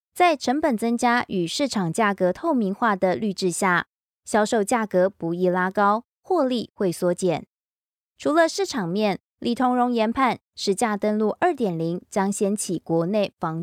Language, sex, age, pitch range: Chinese, female, 20-39, 180-250 Hz